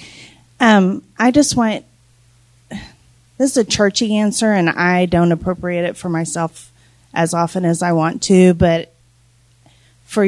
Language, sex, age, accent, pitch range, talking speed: English, female, 30-49, American, 155-190 Hz, 140 wpm